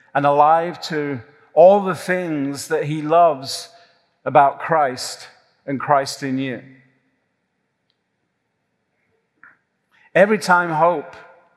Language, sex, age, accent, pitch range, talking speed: English, male, 40-59, British, 140-180 Hz, 95 wpm